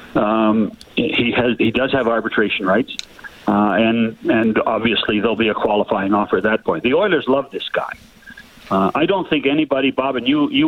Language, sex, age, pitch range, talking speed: English, male, 50-69, 110-140 Hz, 190 wpm